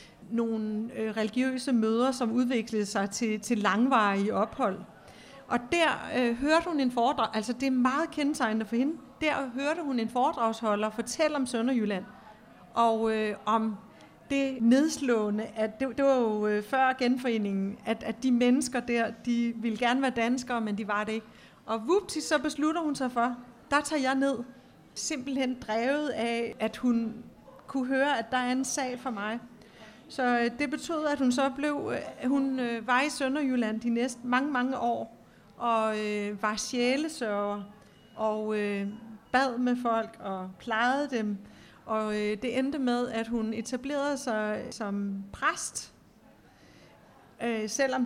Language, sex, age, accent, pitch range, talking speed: Danish, female, 40-59, native, 220-265 Hz, 145 wpm